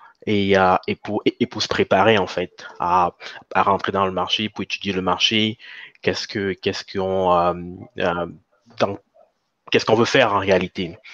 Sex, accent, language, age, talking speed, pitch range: male, French, French, 20-39, 180 wpm, 95-115 Hz